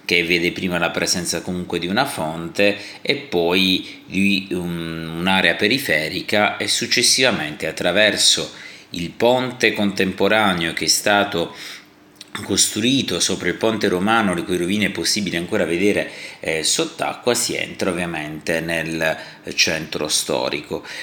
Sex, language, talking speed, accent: male, Italian, 120 wpm, native